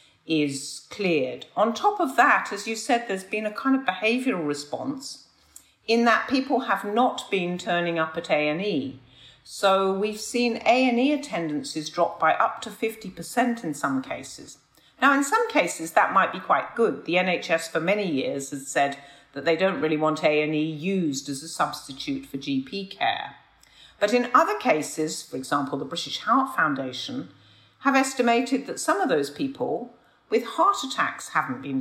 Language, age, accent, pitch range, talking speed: English, 50-69, British, 150-235 Hz, 170 wpm